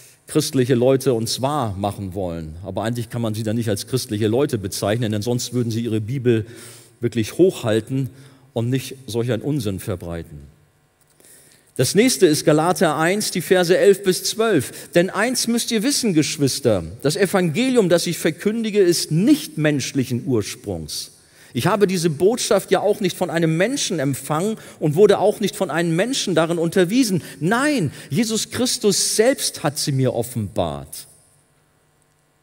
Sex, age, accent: male, 40-59, German